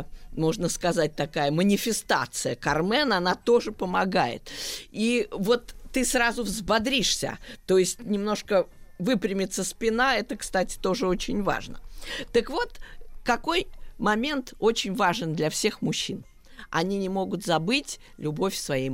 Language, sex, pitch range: Russian, female, 180-255 Hz